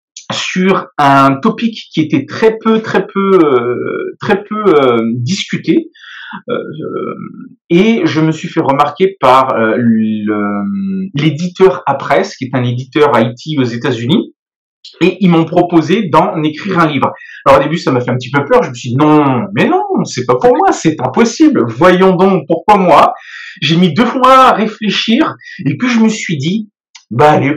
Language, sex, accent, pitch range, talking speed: French, male, French, 135-210 Hz, 185 wpm